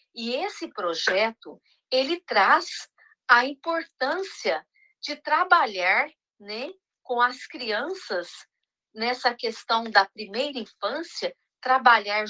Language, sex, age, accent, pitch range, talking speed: Portuguese, female, 40-59, Brazilian, 210-310 Hz, 95 wpm